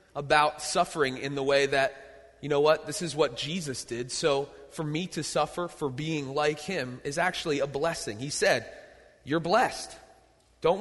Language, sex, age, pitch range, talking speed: English, male, 30-49, 145-205 Hz, 180 wpm